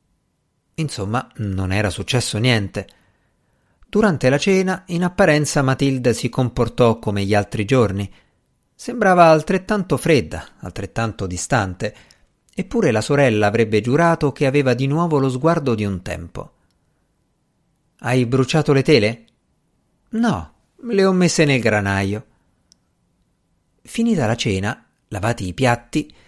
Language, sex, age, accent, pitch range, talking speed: Italian, male, 50-69, native, 105-150 Hz, 120 wpm